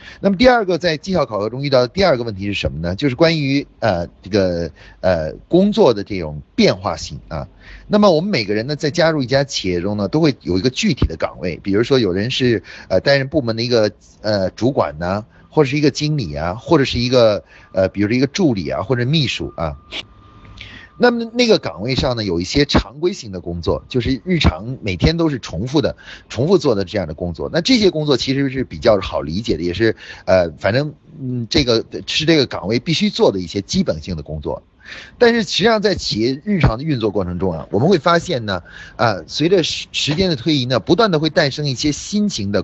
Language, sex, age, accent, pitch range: Chinese, male, 30-49, native, 100-160 Hz